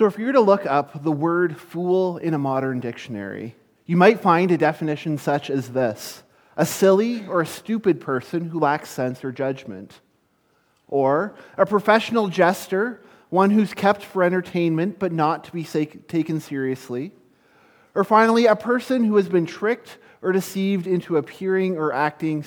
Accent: American